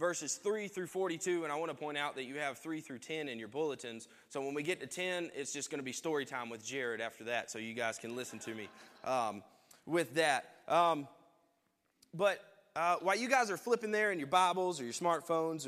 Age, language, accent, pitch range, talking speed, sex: 20-39, English, American, 140-180 Hz, 235 wpm, male